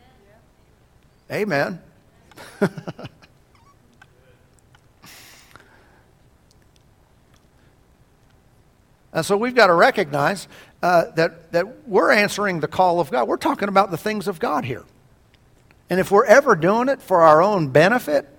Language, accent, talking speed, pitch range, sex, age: English, American, 110 wpm, 150-210 Hz, male, 60-79